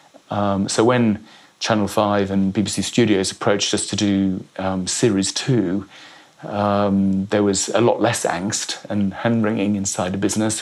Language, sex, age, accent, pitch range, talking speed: English, male, 30-49, British, 95-105 Hz, 155 wpm